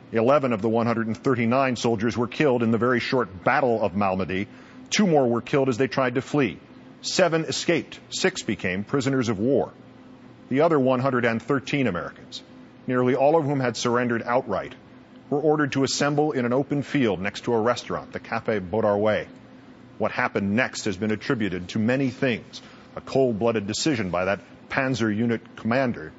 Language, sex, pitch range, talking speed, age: English, male, 115-145 Hz, 165 wpm, 40-59